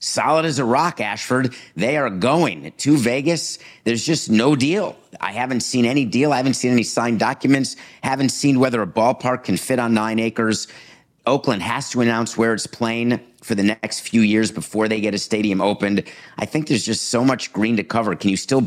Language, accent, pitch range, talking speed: English, American, 95-120 Hz, 210 wpm